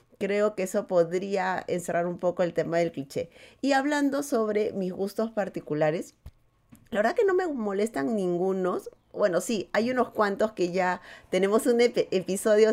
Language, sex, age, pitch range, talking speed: Spanish, female, 30-49, 190-245 Hz, 160 wpm